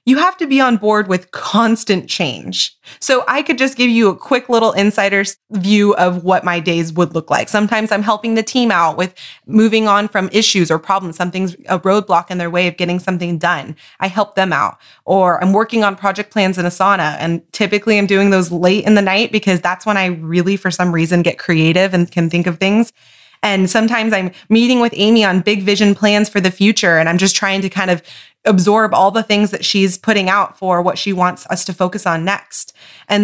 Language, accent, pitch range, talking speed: English, American, 180-215 Hz, 225 wpm